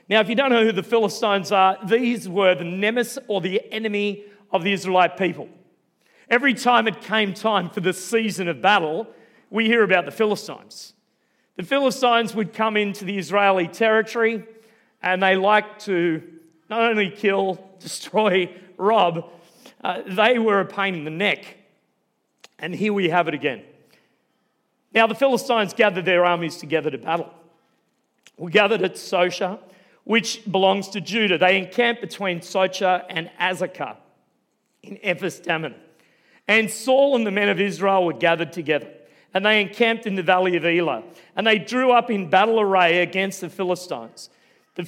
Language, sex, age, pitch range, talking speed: English, male, 40-59, 175-220 Hz, 160 wpm